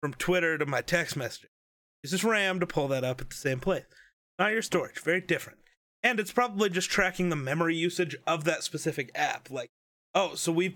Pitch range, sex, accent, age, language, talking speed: 150-205 Hz, male, American, 30-49, English, 210 wpm